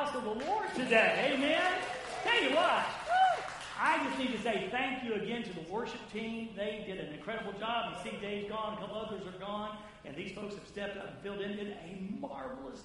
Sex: male